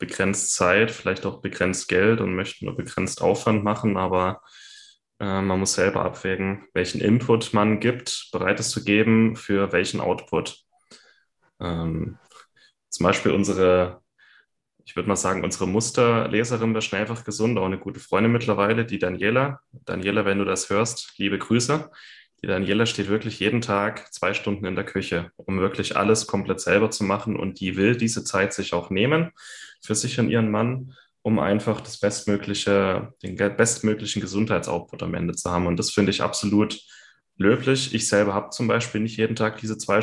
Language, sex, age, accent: German, male, 10-29, German